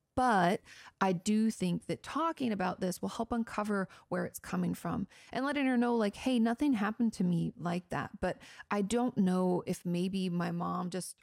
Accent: American